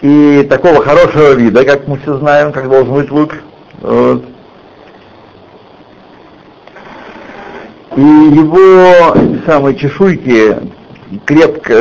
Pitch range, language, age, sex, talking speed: 120-165 Hz, Russian, 60-79, male, 90 wpm